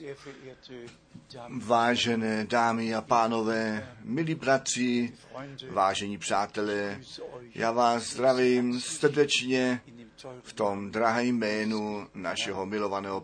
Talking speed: 80 wpm